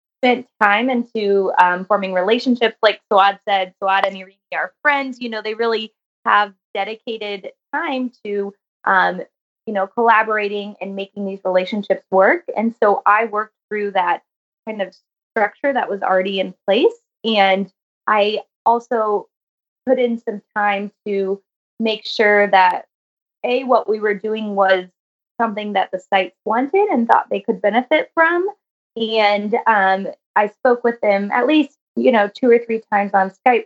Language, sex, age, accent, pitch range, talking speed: English, female, 20-39, American, 190-225 Hz, 160 wpm